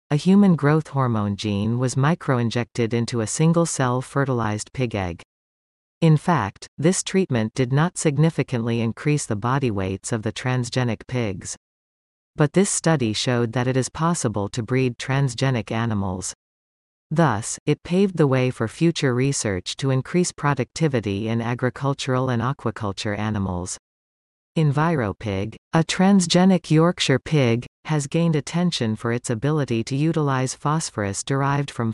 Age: 40-59